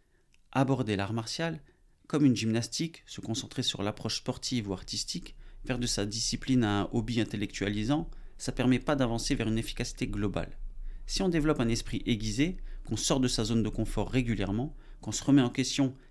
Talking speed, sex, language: 185 wpm, male, French